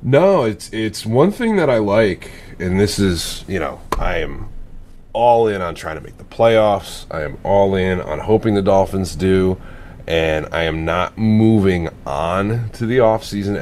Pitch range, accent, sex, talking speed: 85-105 Hz, American, male, 180 wpm